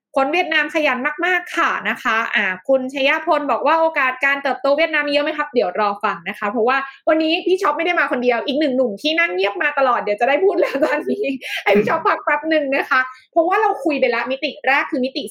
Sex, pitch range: female, 235-300 Hz